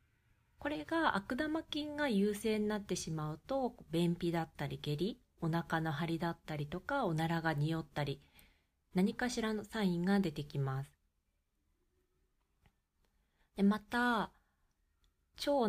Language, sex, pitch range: Japanese, female, 140-200 Hz